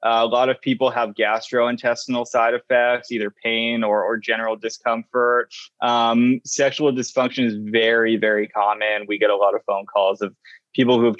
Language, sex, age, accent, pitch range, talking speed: English, male, 20-39, American, 110-130 Hz, 175 wpm